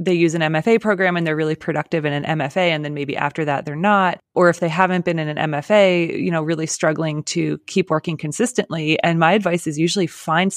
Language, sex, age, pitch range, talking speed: English, female, 20-39, 150-185 Hz, 235 wpm